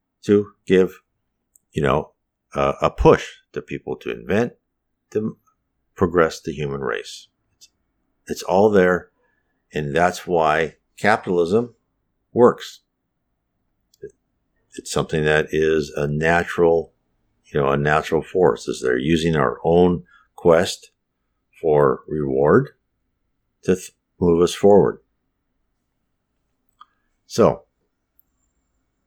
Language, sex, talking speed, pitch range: English, male, 95 wpm, 75-105 Hz